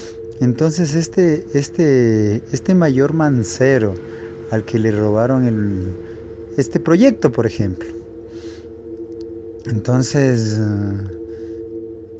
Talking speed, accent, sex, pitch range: 75 wpm, Mexican, male, 110-120 Hz